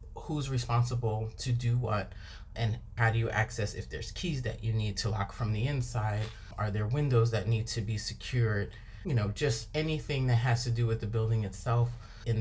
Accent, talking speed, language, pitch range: American, 205 wpm, English, 110-130 Hz